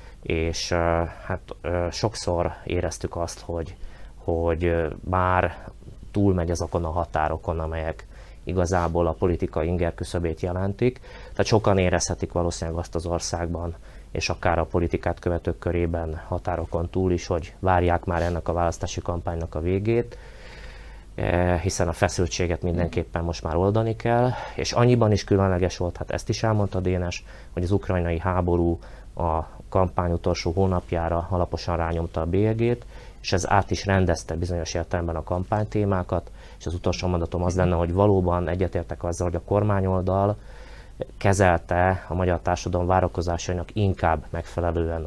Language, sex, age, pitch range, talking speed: Hungarian, male, 30-49, 85-95 Hz, 135 wpm